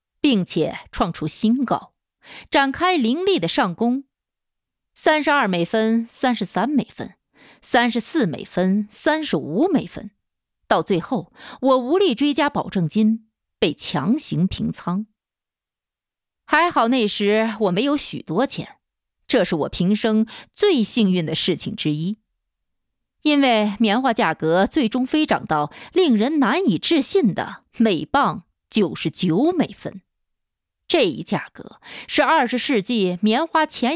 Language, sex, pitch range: Chinese, female, 200-280 Hz